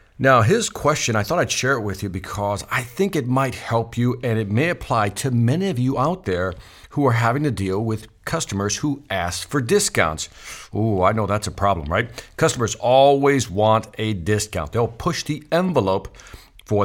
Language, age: English, 50-69